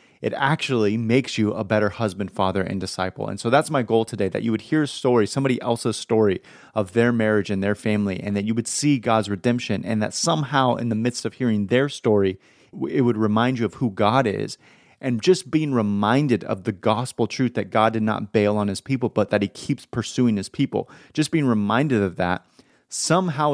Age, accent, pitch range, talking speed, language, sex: 30-49, American, 100-120 Hz, 215 wpm, English, male